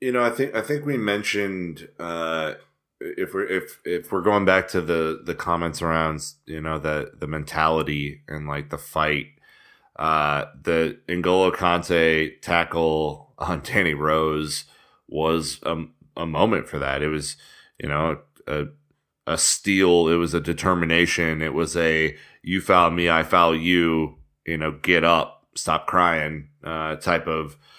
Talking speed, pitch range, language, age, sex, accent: 160 wpm, 80-95 Hz, English, 30-49, male, American